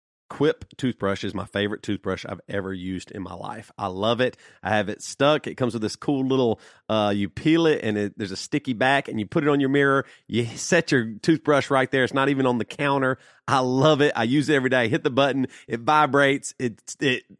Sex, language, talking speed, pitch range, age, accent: male, English, 235 wpm, 115-150 Hz, 40-59, American